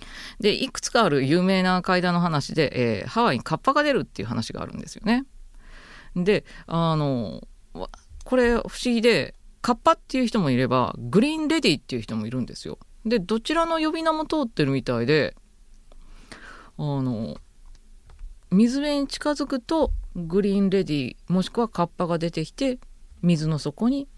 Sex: female